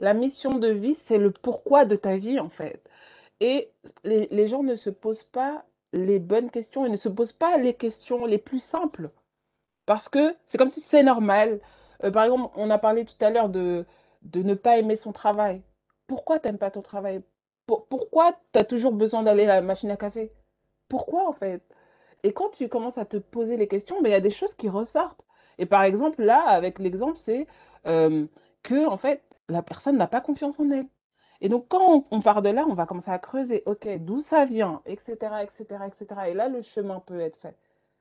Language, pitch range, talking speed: French, 200-270 Hz, 215 wpm